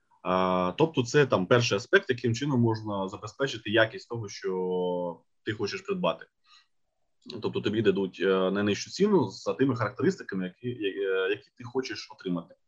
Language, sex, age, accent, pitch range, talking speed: Ukrainian, male, 20-39, native, 100-140 Hz, 135 wpm